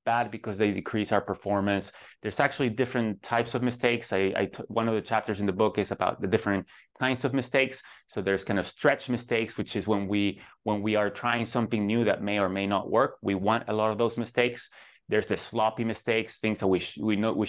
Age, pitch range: 30-49, 100-120 Hz